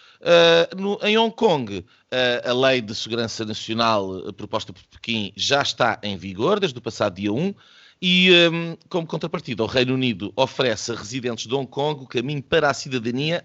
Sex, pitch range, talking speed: male, 110-140 Hz, 165 wpm